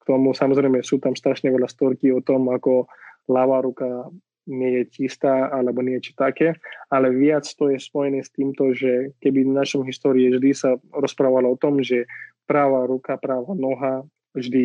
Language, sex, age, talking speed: Slovak, male, 20-39, 170 wpm